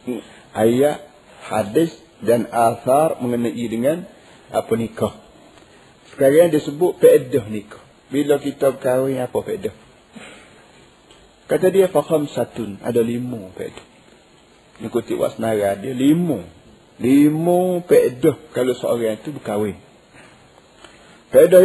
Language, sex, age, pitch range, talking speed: Malay, male, 50-69, 120-160 Hz, 95 wpm